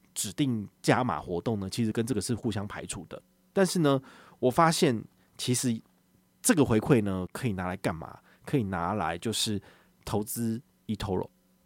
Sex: male